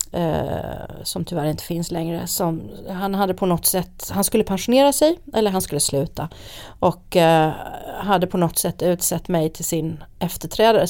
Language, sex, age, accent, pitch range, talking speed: Swedish, female, 40-59, native, 160-205 Hz, 170 wpm